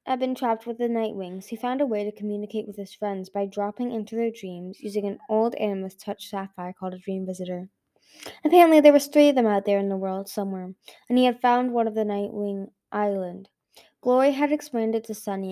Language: English